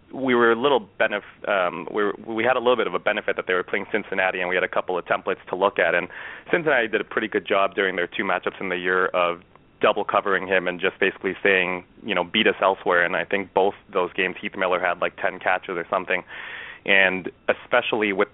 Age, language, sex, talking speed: 30-49, English, male, 245 wpm